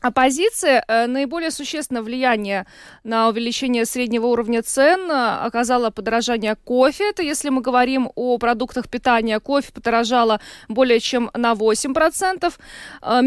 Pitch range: 230-275 Hz